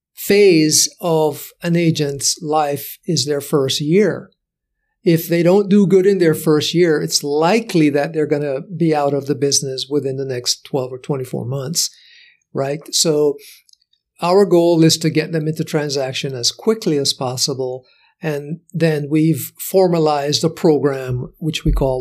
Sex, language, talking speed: male, English, 160 wpm